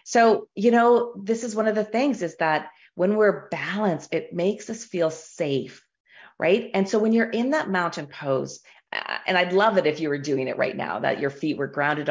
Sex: female